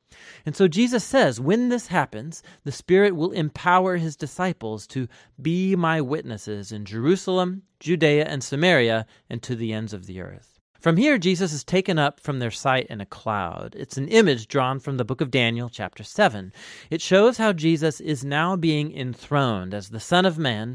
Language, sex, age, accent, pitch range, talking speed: English, male, 30-49, American, 115-175 Hz, 190 wpm